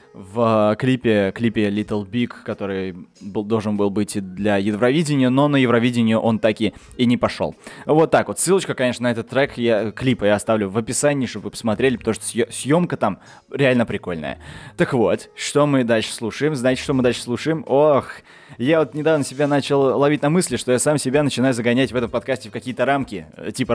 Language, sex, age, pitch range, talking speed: Russian, male, 20-39, 110-140 Hz, 195 wpm